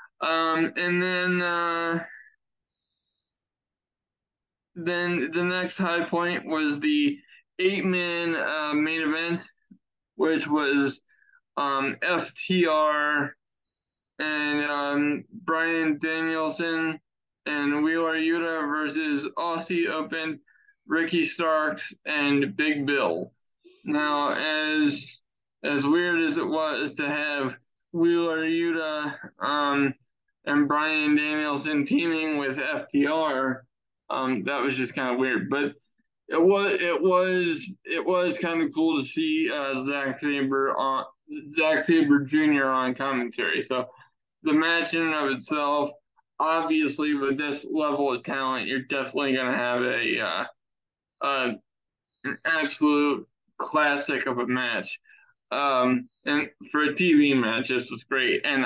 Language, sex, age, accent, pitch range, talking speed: English, male, 20-39, American, 145-170 Hz, 120 wpm